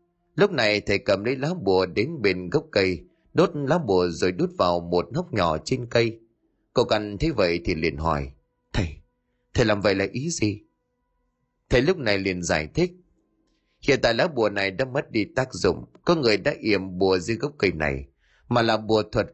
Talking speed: 200 wpm